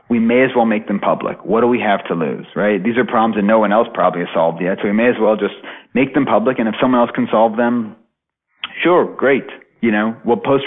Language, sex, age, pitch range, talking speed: English, male, 30-49, 95-120 Hz, 265 wpm